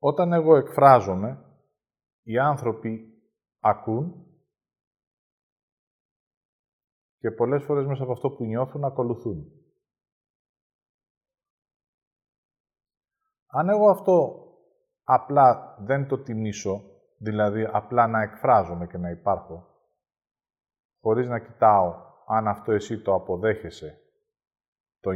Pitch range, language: 105-160 Hz, Greek